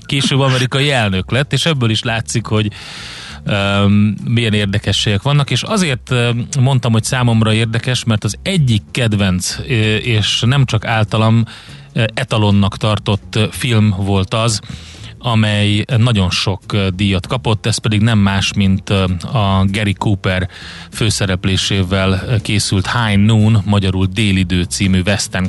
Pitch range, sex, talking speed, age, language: 95-115 Hz, male, 125 wpm, 30-49, Hungarian